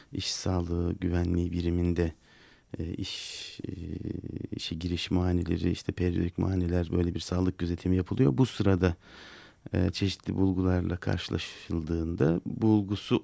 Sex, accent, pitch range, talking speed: male, native, 90-105 Hz, 100 wpm